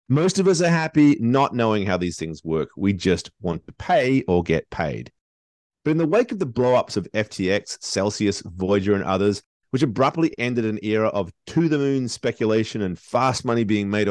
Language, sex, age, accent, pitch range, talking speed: English, male, 30-49, Australian, 95-130 Hz, 190 wpm